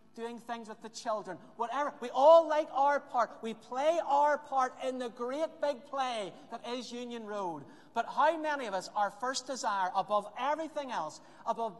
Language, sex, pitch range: English, male, 165-245 Hz